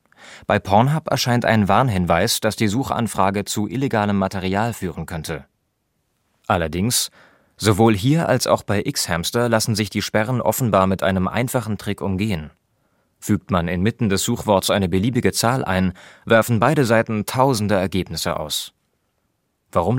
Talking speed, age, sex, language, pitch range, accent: 140 wpm, 30-49, male, German, 95-120 Hz, German